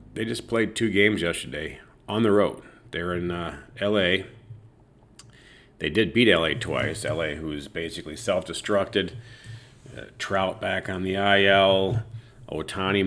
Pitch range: 90-115 Hz